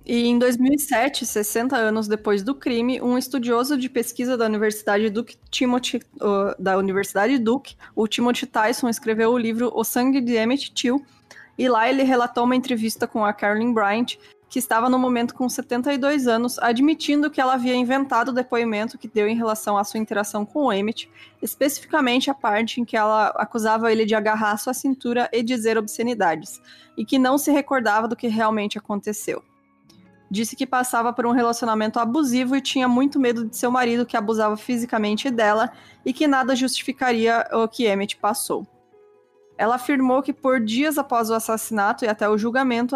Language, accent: Portuguese, Brazilian